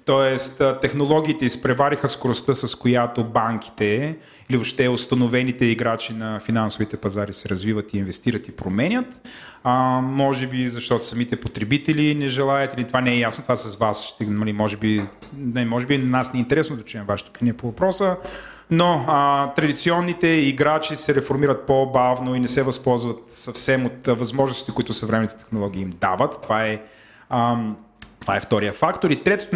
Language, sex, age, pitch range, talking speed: Bulgarian, male, 30-49, 120-150 Hz, 155 wpm